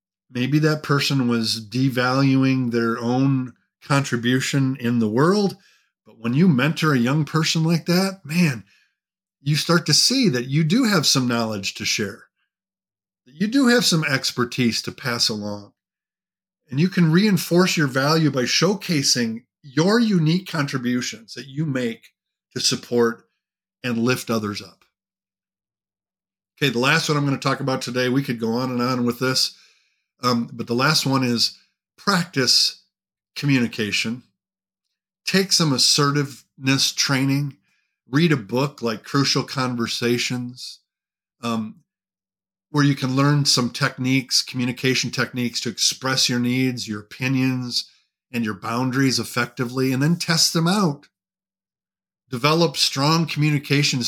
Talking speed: 140 wpm